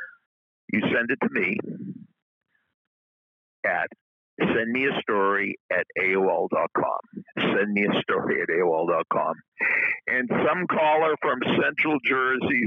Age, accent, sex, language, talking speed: 50-69, American, male, English, 115 wpm